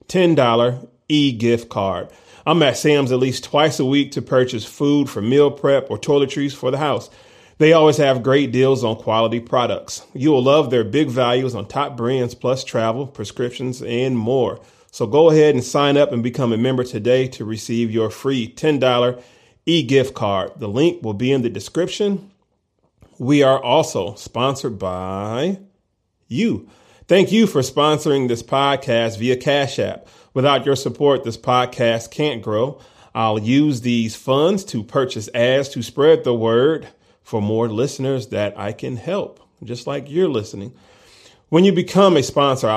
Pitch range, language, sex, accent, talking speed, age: 115-145 Hz, English, male, American, 165 wpm, 30-49